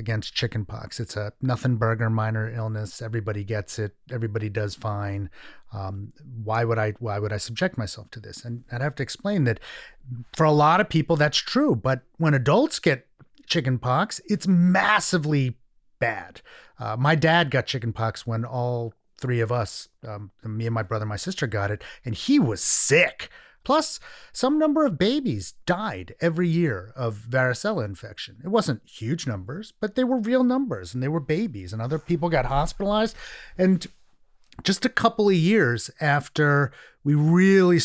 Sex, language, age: male, English, 30-49